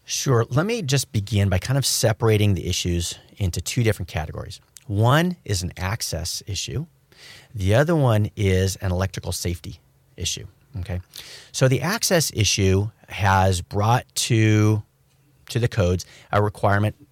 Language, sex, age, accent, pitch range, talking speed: English, male, 40-59, American, 90-125 Hz, 145 wpm